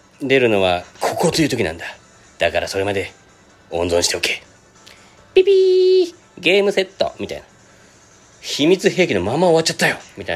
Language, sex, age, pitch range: Japanese, male, 40-59, 95-135 Hz